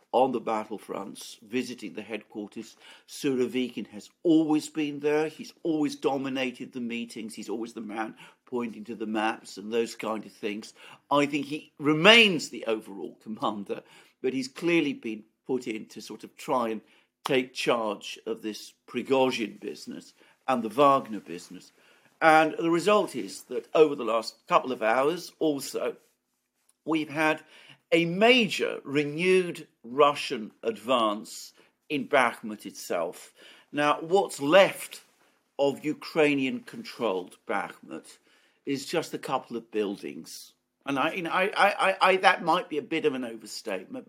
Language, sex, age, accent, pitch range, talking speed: English, male, 50-69, British, 110-155 Hz, 145 wpm